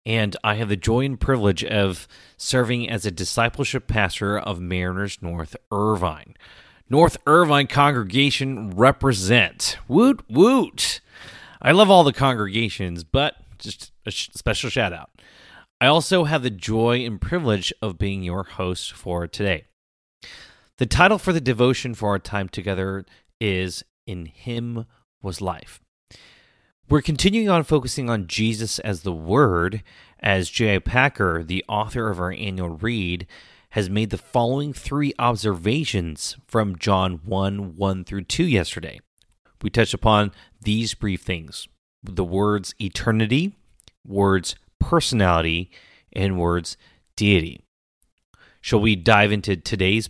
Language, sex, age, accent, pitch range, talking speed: English, male, 30-49, American, 95-125 Hz, 135 wpm